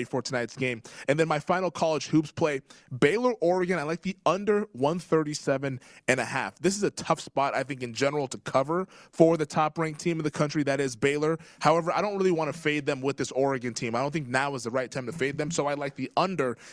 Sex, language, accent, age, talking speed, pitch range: male, English, American, 20-39, 250 wpm, 135-170 Hz